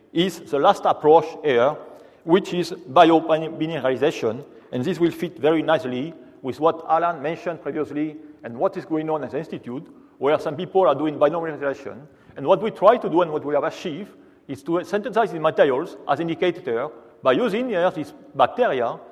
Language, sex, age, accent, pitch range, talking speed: English, male, 40-59, French, 145-195 Hz, 180 wpm